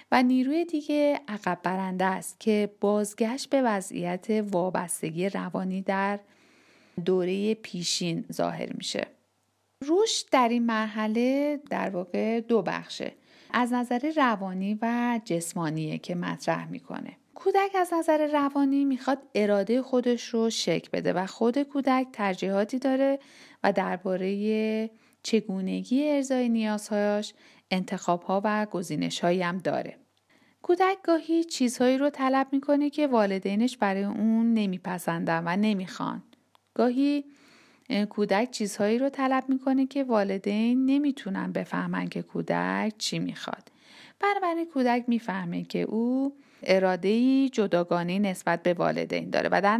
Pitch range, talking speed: 195-275 Hz, 115 wpm